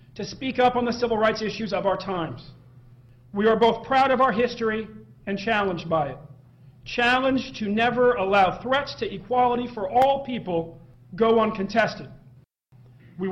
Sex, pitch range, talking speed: male, 170-240 Hz, 160 wpm